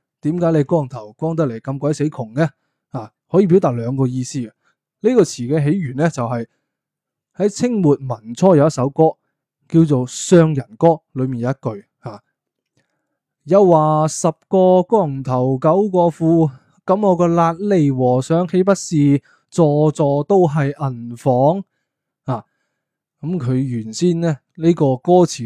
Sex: male